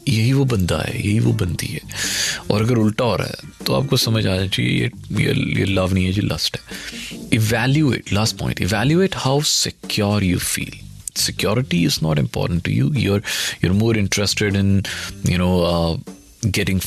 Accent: native